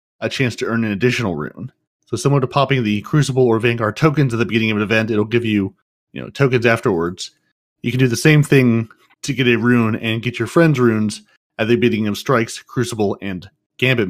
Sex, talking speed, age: male, 220 wpm, 30-49